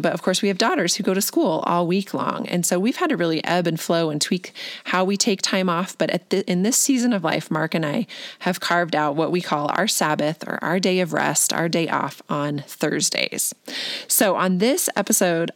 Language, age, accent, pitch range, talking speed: English, 20-39, American, 170-220 Hz, 240 wpm